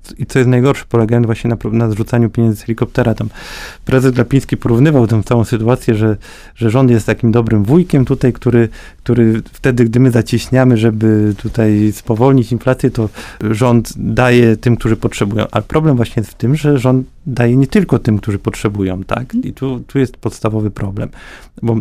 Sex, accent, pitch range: male, native, 110-130 Hz